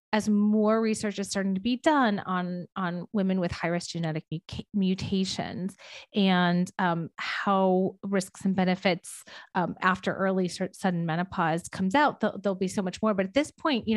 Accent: American